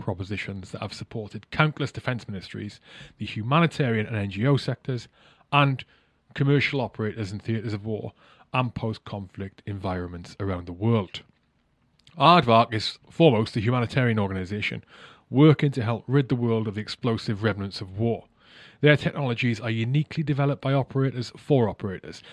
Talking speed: 140 wpm